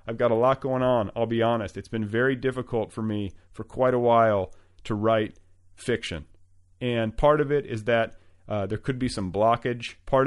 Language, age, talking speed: English, 40-59, 205 wpm